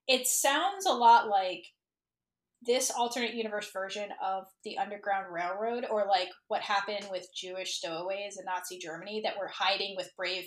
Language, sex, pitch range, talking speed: English, female, 205-280 Hz, 160 wpm